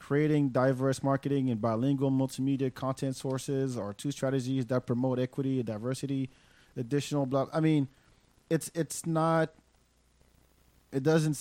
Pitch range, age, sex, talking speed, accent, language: 120-145 Hz, 30-49, male, 130 wpm, American, English